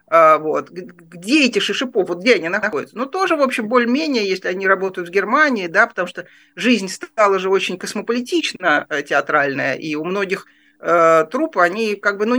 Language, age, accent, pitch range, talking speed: Russian, 40-59, native, 165-225 Hz, 170 wpm